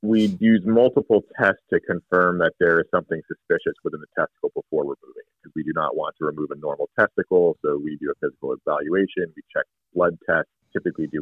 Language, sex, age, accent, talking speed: English, male, 30-49, American, 205 wpm